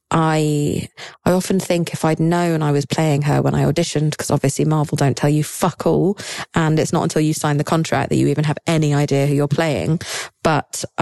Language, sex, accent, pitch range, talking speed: English, female, British, 150-190 Hz, 220 wpm